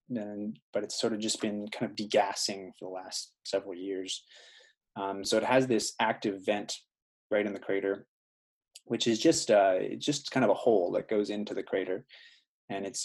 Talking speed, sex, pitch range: 200 wpm, male, 100-115 Hz